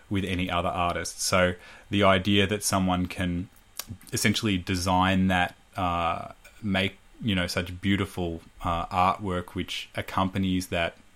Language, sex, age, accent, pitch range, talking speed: English, male, 20-39, Australian, 90-100 Hz, 130 wpm